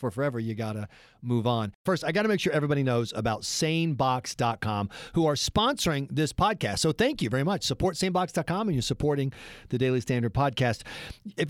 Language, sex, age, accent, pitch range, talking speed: English, male, 40-59, American, 130-195 Hz, 195 wpm